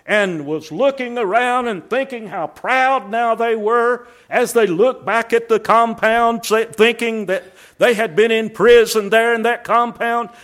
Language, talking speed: English, 165 wpm